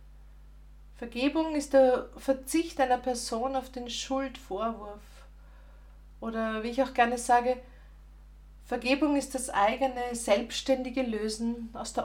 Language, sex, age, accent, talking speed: German, female, 40-59, Austrian, 115 wpm